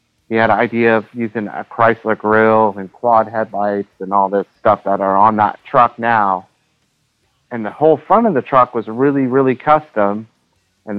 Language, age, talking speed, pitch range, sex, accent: English, 30-49, 185 wpm, 110-125 Hz, male, American